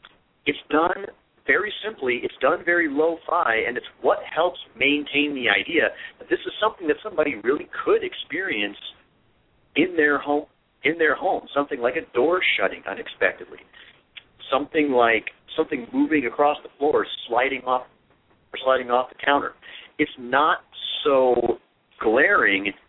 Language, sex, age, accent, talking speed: English, male, 50-69, American, 145 wpm